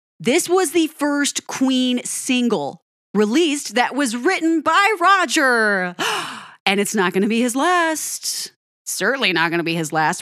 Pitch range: 195-285 Hz